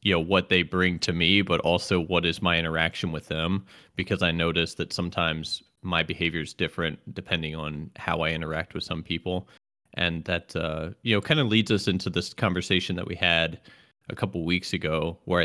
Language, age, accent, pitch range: English, 30-49, American, 85-100 Hz